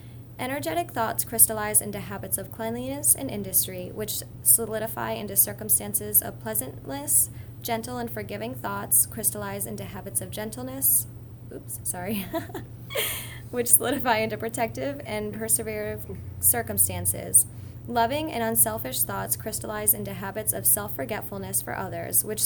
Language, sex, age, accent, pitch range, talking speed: English, female, 20-39, American, 105-125 Hz, 120 wpm